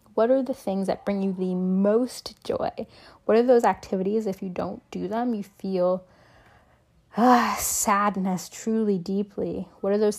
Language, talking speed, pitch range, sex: English, 165 wpm, 195-235 Hz, female